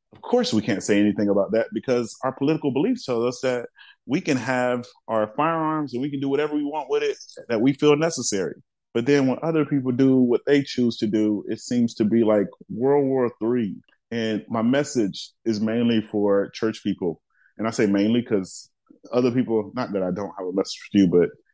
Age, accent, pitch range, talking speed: 30-49, American, 100-125 Hz, 215 wpm